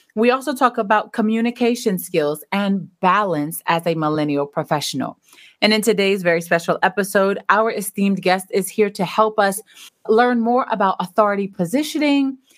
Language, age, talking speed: English, 30-49, 150 wpm